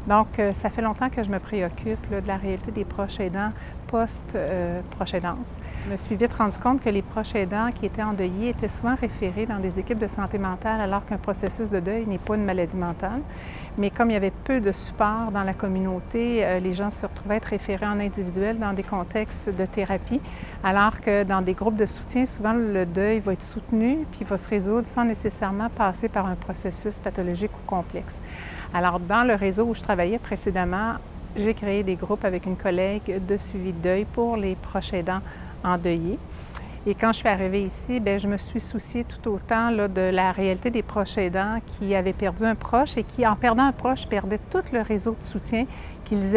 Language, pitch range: French, 190-225 Hz